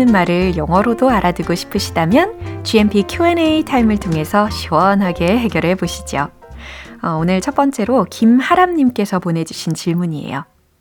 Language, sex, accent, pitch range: Korean, female, native, 160-225 Hz